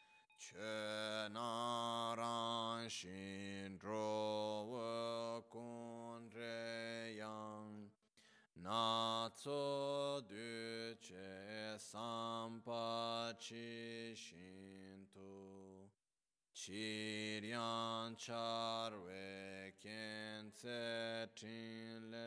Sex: male